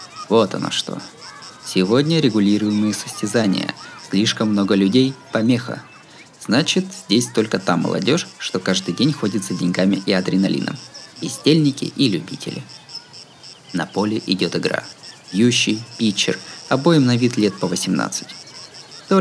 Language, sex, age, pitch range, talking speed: Russian, male, 20-39, 95-135 Hz, 120 wpm